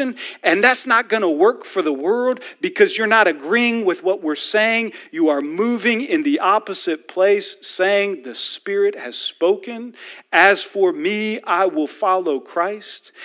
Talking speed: 165 wpm